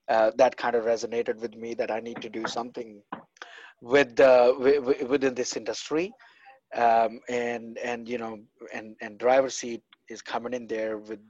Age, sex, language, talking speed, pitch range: 30-49, male, English, 180 wpm, 110-125 Hz